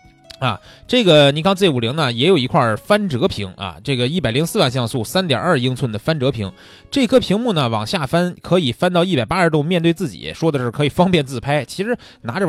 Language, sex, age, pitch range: Chinese, male, 20-39, 120-180 Hz